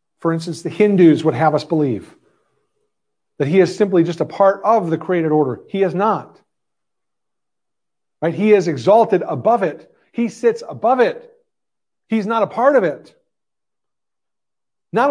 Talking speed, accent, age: 155 wpm, American, 50-69